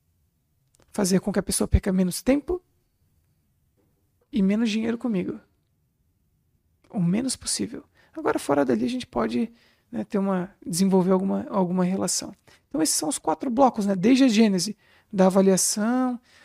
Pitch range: 170-200 Hz